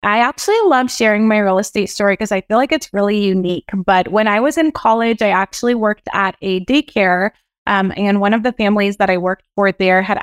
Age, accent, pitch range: 20-39, American, 190-220 Hz